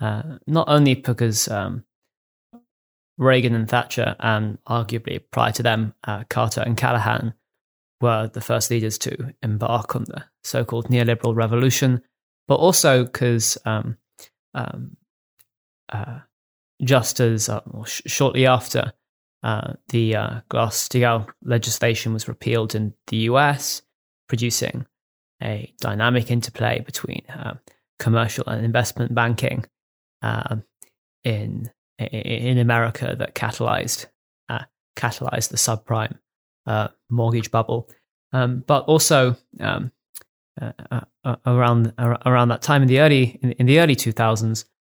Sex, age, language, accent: male, 20-39, English, British